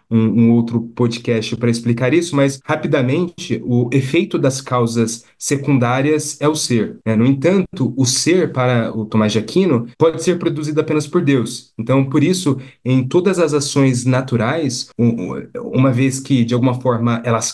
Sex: male